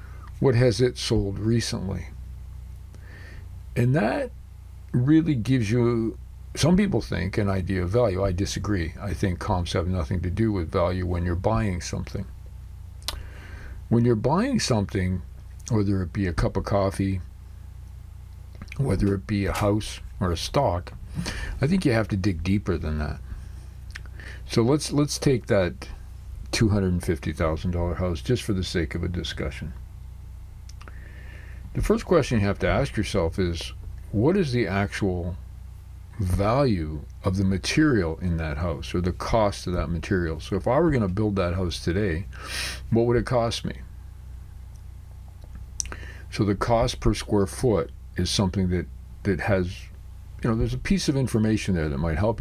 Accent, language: American, English